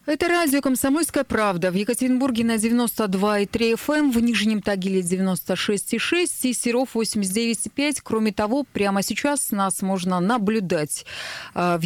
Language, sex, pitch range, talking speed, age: Russian, female, 185-240 Hz, 120 wpm, 20-39